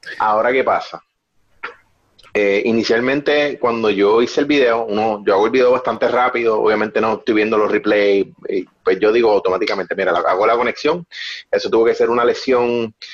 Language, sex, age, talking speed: Spanish, male, 30-49, 170 wpm